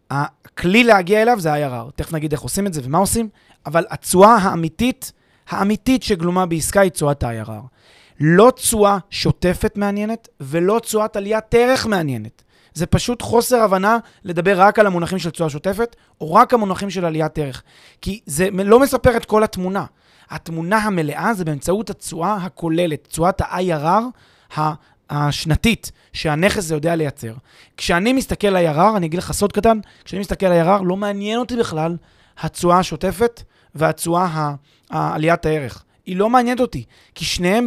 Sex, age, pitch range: male, 30-49, 155-210 Hz